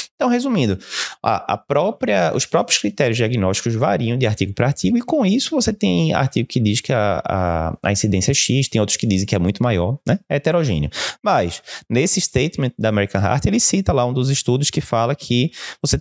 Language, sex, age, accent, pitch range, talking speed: Portuguese, male, 20-39, Brazilian, 95-145 Hz, 210 wpm